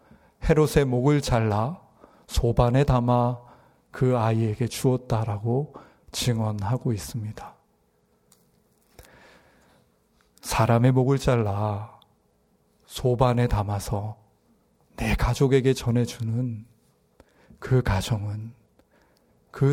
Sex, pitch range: male, 110-140 Hz